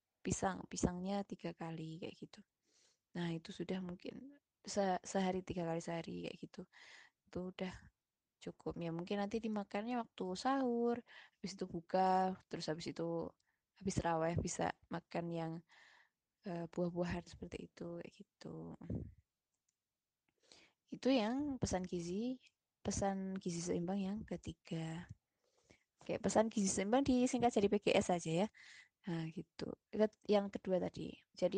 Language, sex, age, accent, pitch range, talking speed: Indonesian, female, 20-39, native, 175-220 Hz, 130 wpm